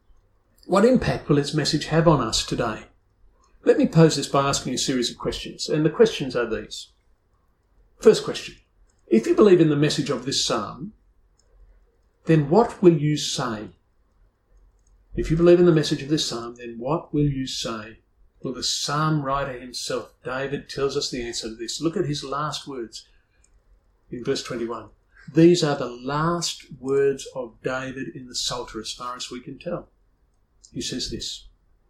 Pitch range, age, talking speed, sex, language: 110-170 Hz, 50-69, 175 wpm, male, English